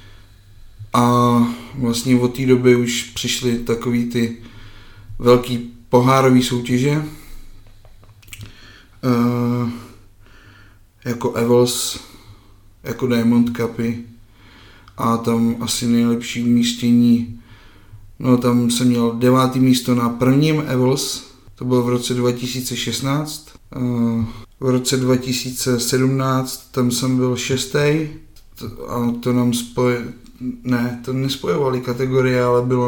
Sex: male